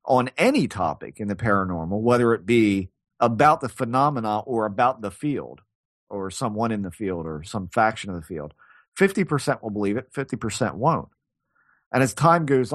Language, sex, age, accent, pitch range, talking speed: English, male, 40-59, American, 100-140 Hz, 185 wpm